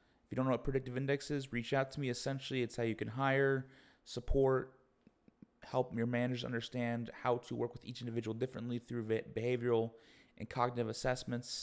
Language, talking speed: English, 180 wpm